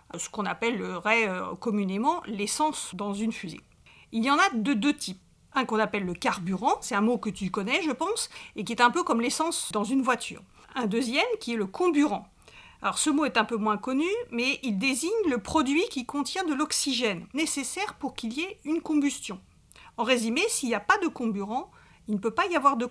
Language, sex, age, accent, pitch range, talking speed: French, female, 50-69, French, 210-300 Hz, 215 wpm